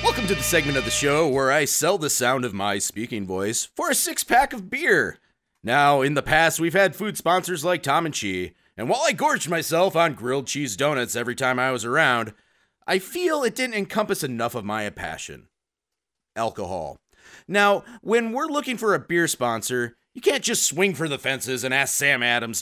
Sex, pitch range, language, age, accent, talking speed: male, 120-195 Hz, English, 30-49, American, 200 wpm